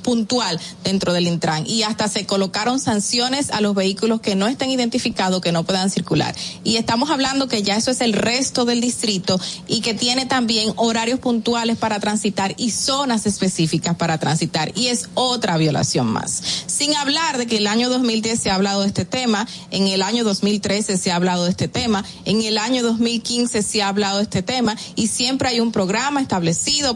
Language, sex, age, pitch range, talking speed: Spanish, female, 30-49, 195-245 Hz, 195 wpm